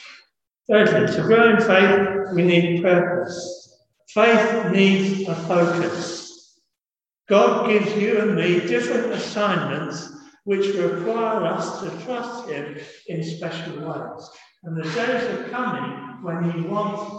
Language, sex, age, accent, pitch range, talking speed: English, male, 60-79, British, 170-230 Hz, 125 wpm